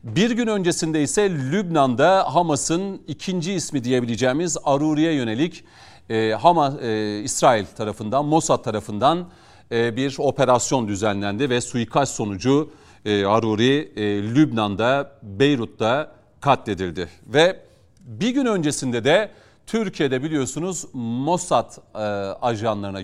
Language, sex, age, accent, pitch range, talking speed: Turkish, male, 40-59, native, 110-150 Hz, 90 wpm